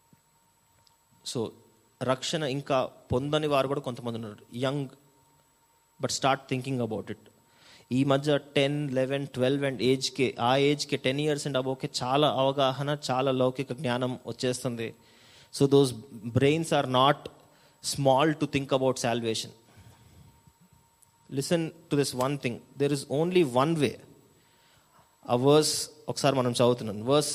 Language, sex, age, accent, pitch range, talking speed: Telugu, male, 30-49, native, 125-150 Hz, 130 wpm